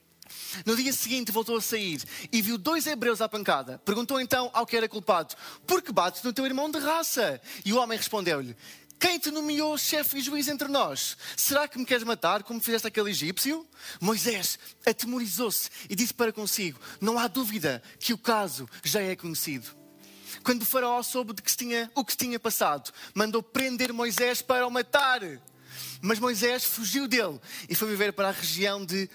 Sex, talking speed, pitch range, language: male, 180 wpm, 180-250 Hz, Portuguese